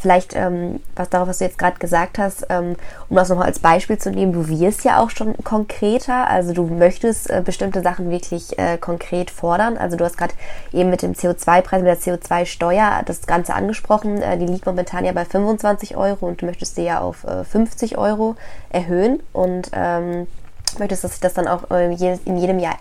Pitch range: 175-200 Hz